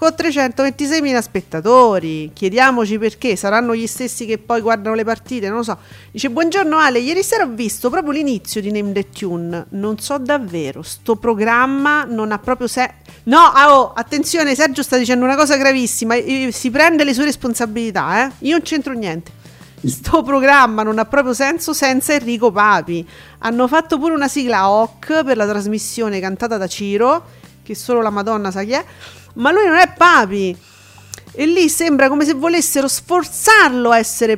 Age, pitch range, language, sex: 40-59, 205-290 Hz, Italian, female